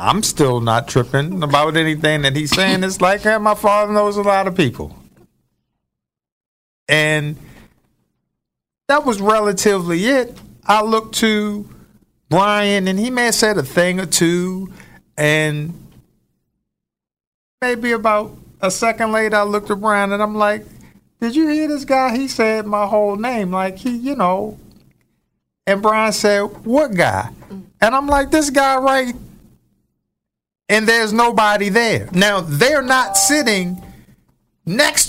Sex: male